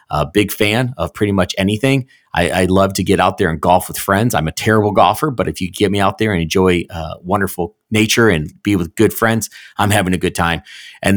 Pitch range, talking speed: 90-115 Hz, 245 wpm